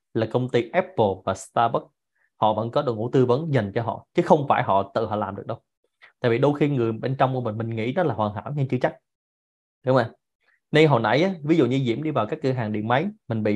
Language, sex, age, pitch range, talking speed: Vietnamese, male, 20-39, 115-155 Hz, 270 wpm